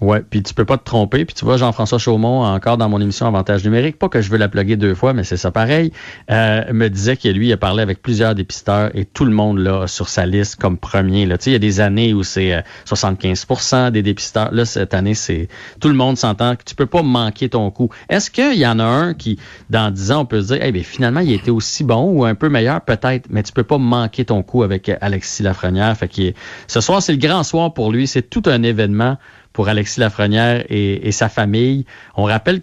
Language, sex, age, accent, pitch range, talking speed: French, male, 30-49, Canadian, 100-130 Hz, 260 wpm